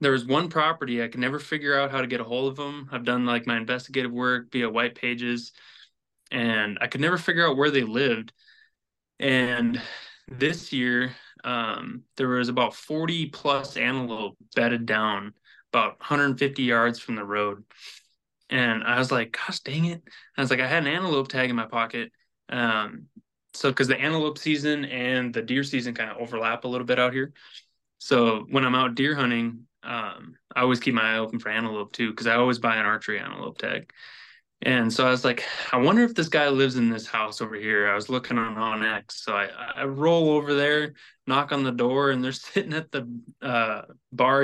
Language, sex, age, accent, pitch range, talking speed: English, male, 20-39, American, 120-145 Hz, 205 wpm